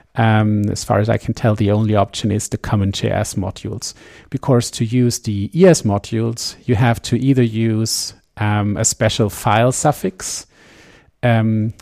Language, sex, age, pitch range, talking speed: English, male, 50-69, 100-120 Hz, 160 wpm